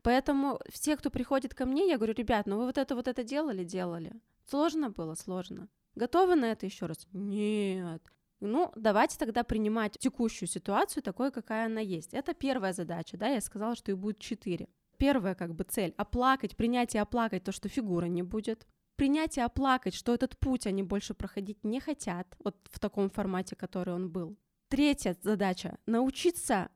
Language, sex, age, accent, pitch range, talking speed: Russian, female, 20-39, native, 200-260 Hz, 180 wpm